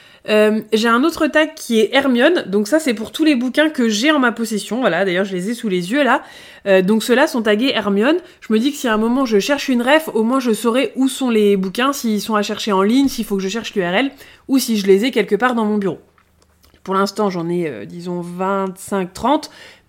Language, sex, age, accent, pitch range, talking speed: French, female, 20-39, French, 190-265 Hz, 255 wpm